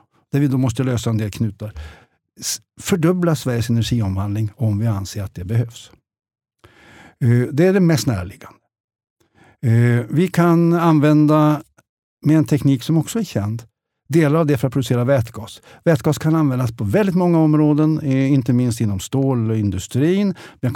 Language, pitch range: Swedish, 115-155 Hz